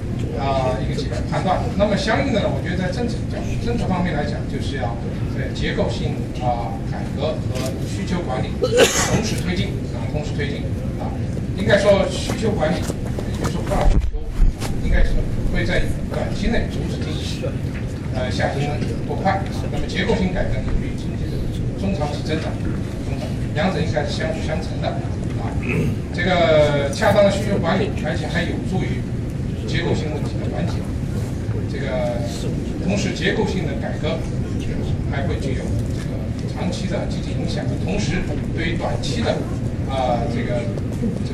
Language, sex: Chinese, male